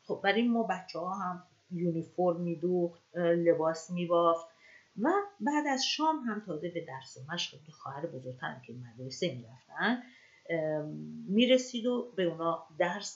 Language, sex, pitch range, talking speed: Persian, female, 155-225 Hz, 155 wpm